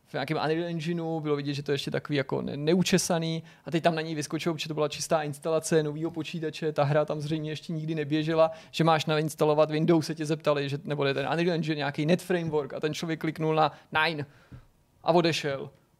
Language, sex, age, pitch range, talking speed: Czech, male, 30-49, 150-170 Hz, 210 wpm